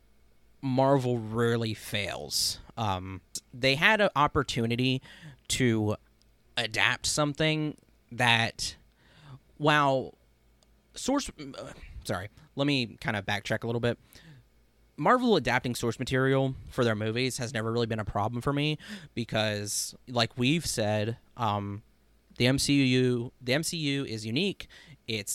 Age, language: 30-49, English